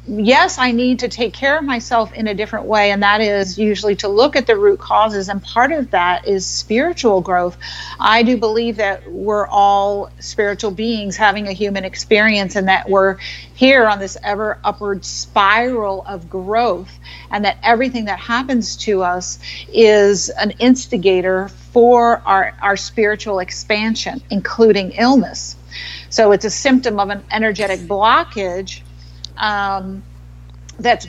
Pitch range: 185-225 Hz